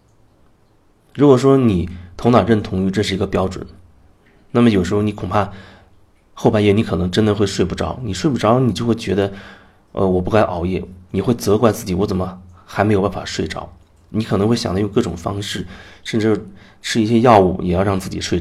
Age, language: 30-49, Chinese